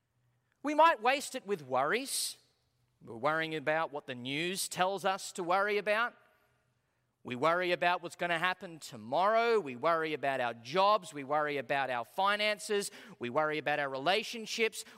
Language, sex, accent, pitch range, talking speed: English, male, Australian, 150-205 Hz, 160 wpm